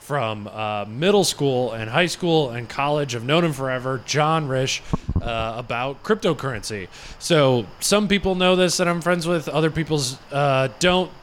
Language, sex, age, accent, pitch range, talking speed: English, male, 20-39, American, 120-155 Hz, 160 wpm